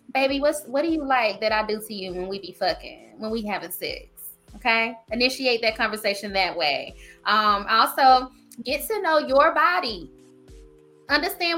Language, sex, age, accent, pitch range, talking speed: English, female, 20-39, American, 220-280 Hz, 170 wpm